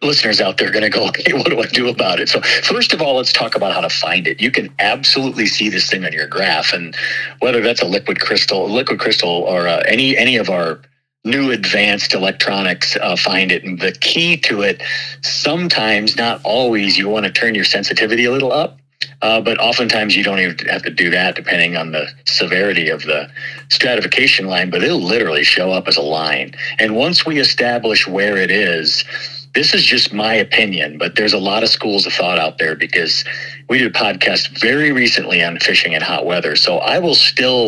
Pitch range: 100-135 Hz